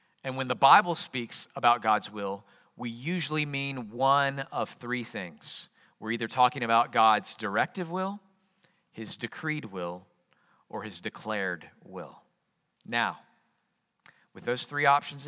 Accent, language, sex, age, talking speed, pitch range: American, English, male, 40-59, 135 wpm, 115-160 Hz